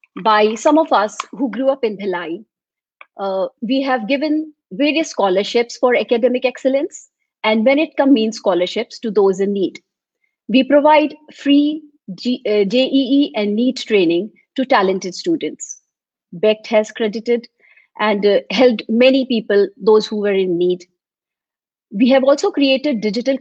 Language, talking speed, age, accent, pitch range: Hindi, 150 wpm, 50-69, native, 205-280 Hz